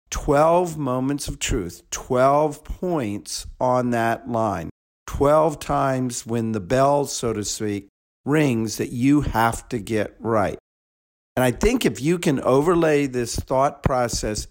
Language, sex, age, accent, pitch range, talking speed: English, male, 50-69, American, 105-145 Hz, 140 wpm